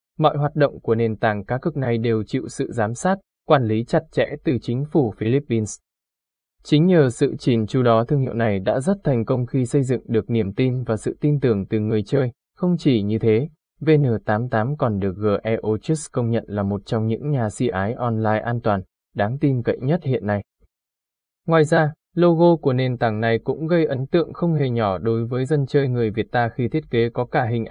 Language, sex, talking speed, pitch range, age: Vietnamese, male, 220 wpm, 110-145 Hz, 20-39